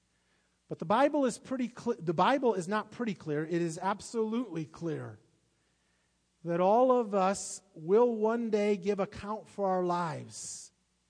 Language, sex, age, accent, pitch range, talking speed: English, male, 40-59, American, 175-235 Hz, 150 wpm